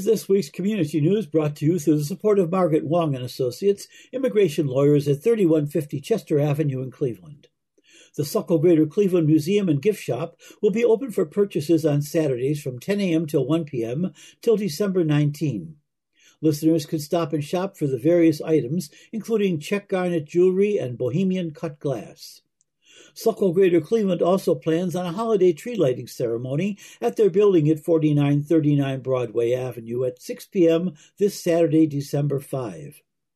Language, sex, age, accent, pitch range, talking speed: English, male, 60-79, American, 150-185 Hz, 160 wpm